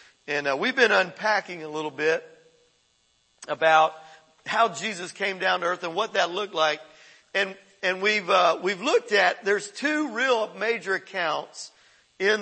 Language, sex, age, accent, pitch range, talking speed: English, male, 50-69, American, 160-205 Hz, 170 wpm